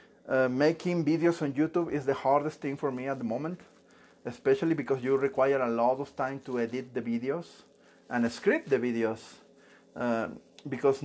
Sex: male